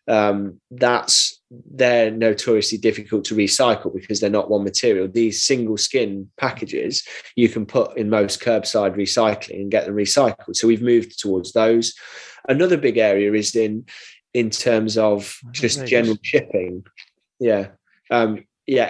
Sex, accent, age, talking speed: male, British, 20-39, 145 wpm